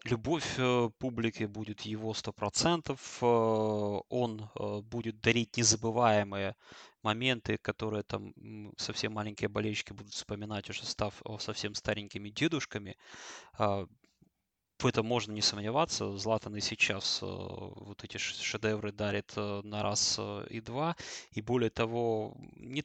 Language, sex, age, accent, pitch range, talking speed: Russian, male, 20-39, native, 105-120 Hz, 110 wpm